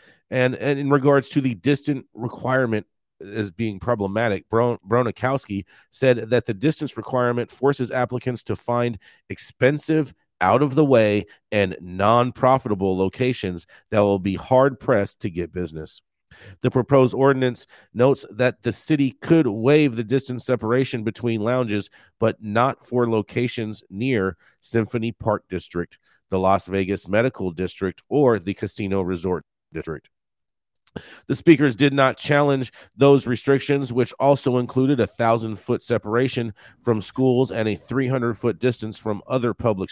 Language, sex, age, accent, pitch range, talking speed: English, male, 40-59, American, 100-130 Hz, 135 wpm